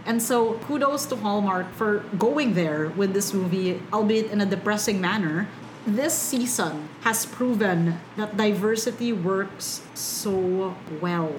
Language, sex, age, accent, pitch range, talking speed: English, female, 30-49, Filipino, 185-225 Hz, 130 wpm